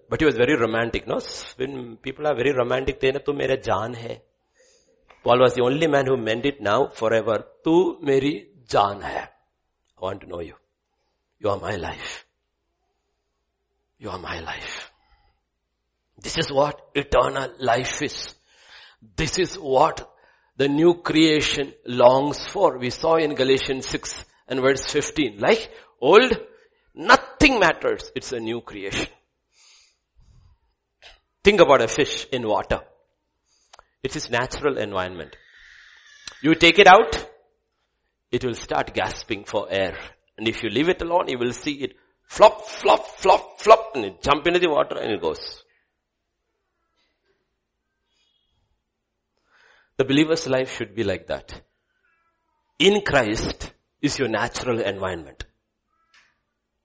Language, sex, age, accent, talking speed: English, male, 60-79, Indian, 135 wpm